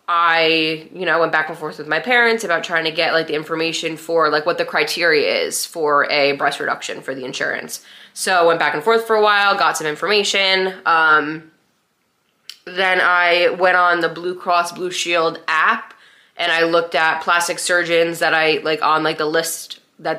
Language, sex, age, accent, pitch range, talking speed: English, female, 20-39, American, 160-185 Hz, 200 wpm